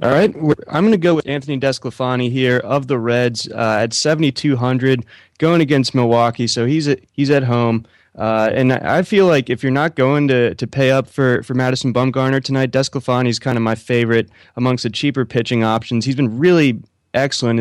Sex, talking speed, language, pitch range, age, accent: male, 200 wpm, English, 115-130 Hz, 20-39, American